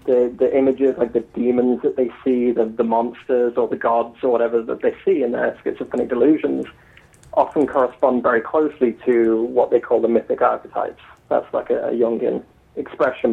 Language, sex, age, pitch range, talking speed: English, male, 30-49, 120-145 Hz, 185 wpm